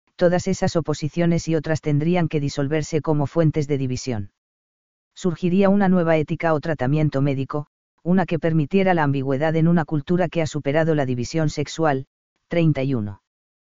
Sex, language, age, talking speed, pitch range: female, Spanish, 40-59, 150 wpm, 145-165 Hz